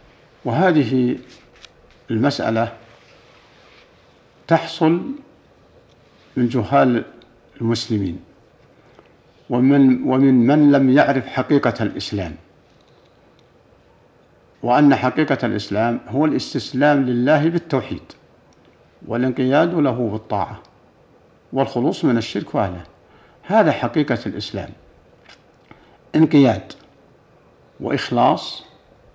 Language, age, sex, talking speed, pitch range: Arabic, 60-79, male, 65 wpm, 110-140 Hz